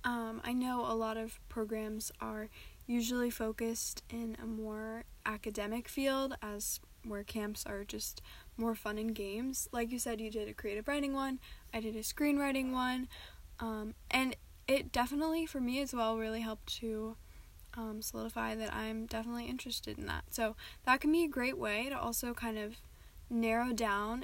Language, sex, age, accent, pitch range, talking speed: English, female, 10-29, American, 220-255 Hz, 175 wpm